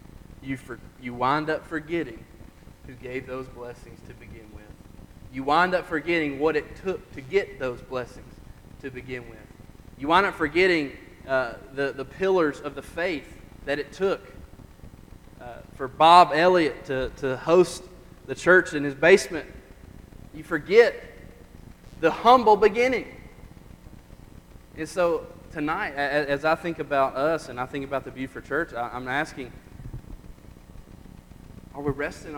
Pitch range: 135-180 Hz